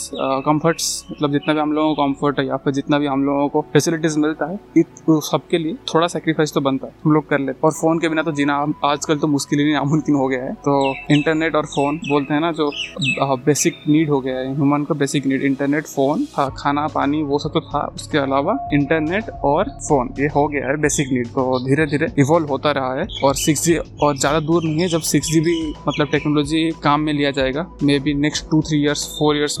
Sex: male